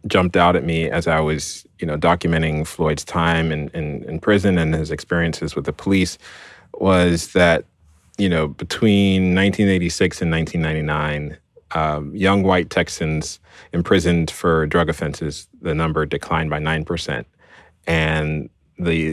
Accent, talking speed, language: American, 145 wpm, English